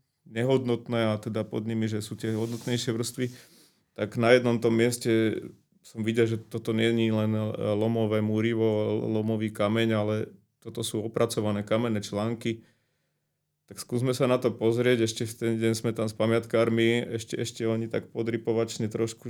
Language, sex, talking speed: Slovak, male, 160 wpm